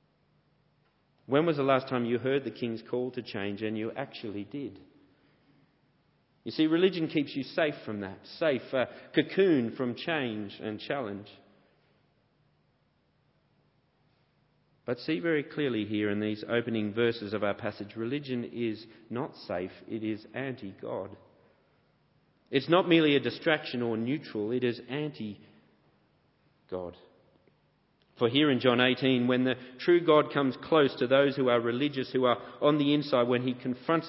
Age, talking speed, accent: 40-59, 150 wpm, Australian